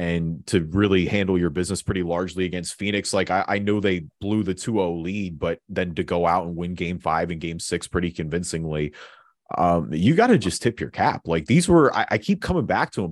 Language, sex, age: English, male, 30-49